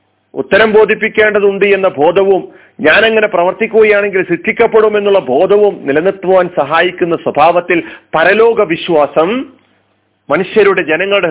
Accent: native